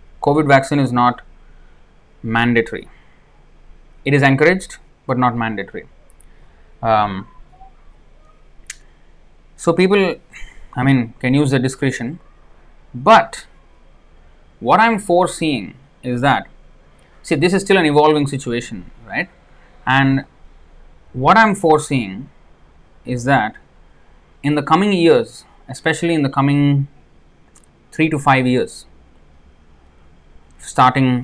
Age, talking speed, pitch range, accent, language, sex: 20-39, 100 wpm, 100-145 Hz, Indian, English, male